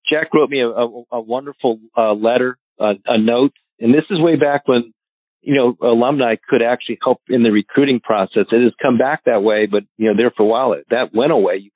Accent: American